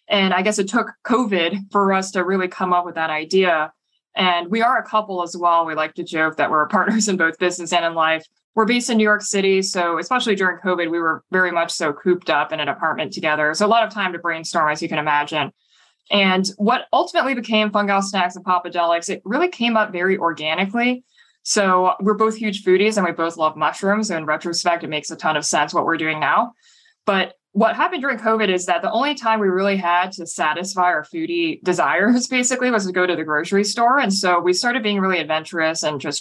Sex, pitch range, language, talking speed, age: female, 165-210 Hz, English, 230 wpm, 20-39